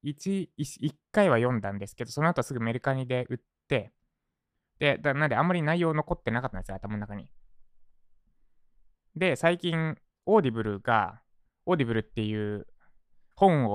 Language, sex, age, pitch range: Japanese, male, 20-39, 105-145 Hz